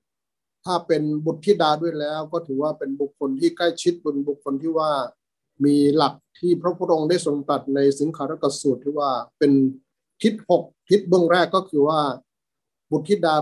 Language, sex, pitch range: Thai, male, 140-165 Hz